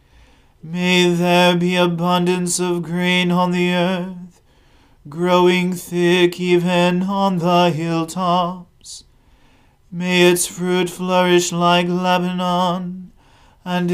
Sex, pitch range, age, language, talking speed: male, 170-180 Hz, 40-59, English, 95 wpm